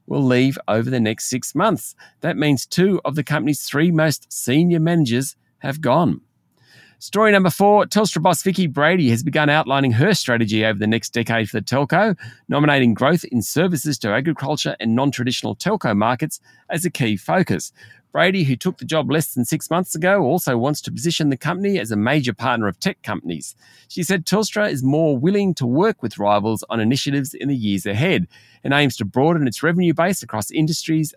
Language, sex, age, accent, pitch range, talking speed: English, male, 40-59, Australian, 115-165 Hz, 195 wpm